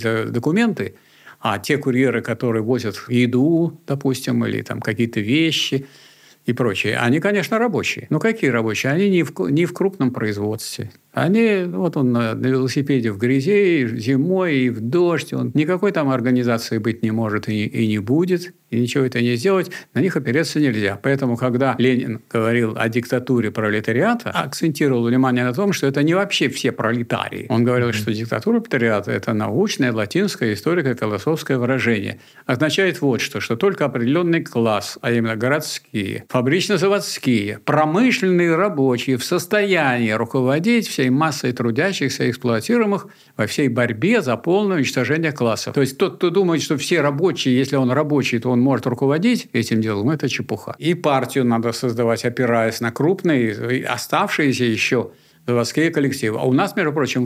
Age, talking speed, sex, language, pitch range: 50-69, 160 wpm, male, Russian, 115-160 Hz